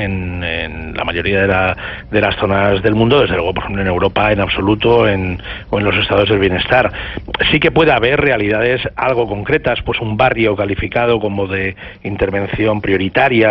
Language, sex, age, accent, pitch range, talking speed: Spanish, male, 40-59, Spanish, 100-120 Hz, 180 wpm